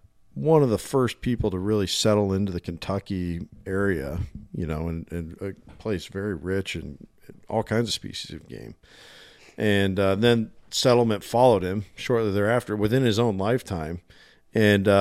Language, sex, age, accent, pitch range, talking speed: English, male, 50-69, American, 90-105 Hz, 160 wpm